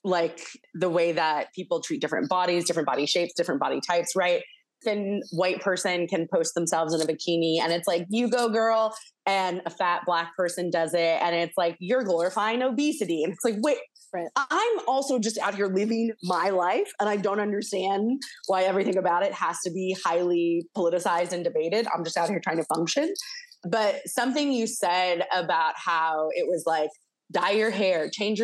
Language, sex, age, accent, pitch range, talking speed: English, female, 20-39, American, 165-220 Hz, 190 wpm